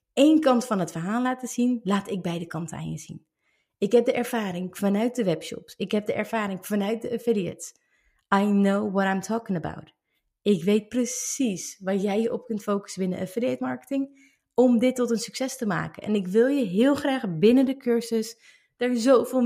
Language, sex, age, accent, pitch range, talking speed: Dutch, female, 30-49, Dutch, 200-255 Hz, 195 wpm